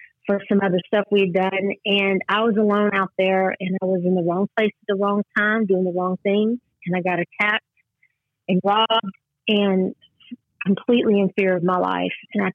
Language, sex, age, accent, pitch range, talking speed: English, female, 40-59, American, 190-225 Hz, 195 wpm